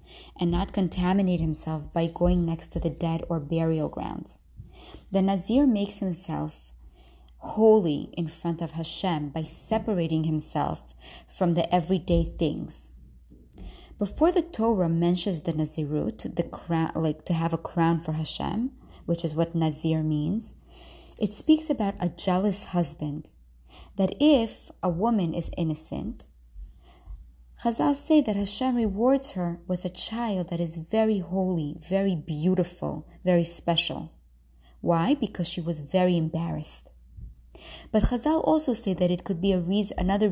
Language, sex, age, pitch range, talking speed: English, female, 20-39, 155-200 Hz, 140 wpm